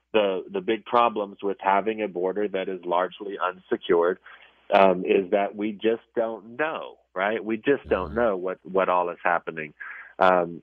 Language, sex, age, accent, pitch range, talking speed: English, male, 40-59, American, 95-110 Hz, 170 wpm